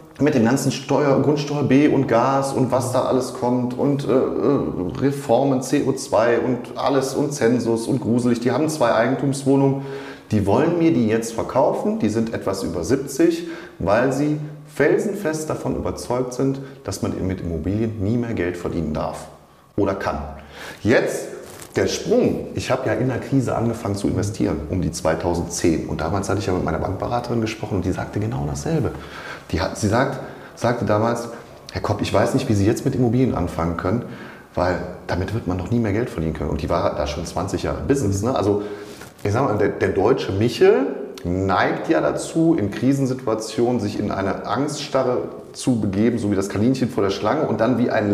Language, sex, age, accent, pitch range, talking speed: German, male, 30-49, German, 95-135 Hz, 190 wpm